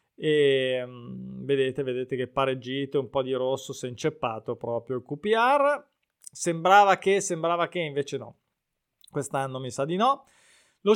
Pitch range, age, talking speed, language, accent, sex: 145-175 Hz, 20-39, 150 wpm, Italian, native, male